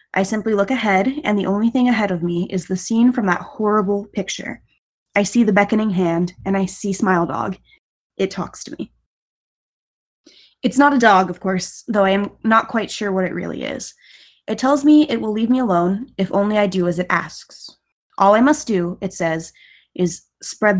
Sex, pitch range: female, 185-230 Hz